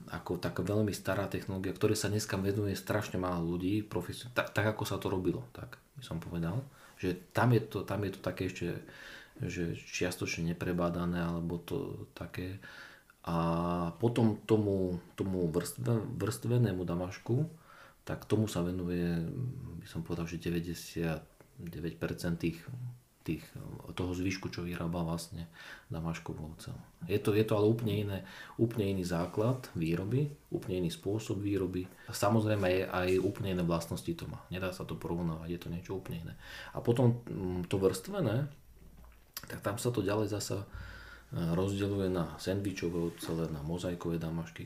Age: 40-59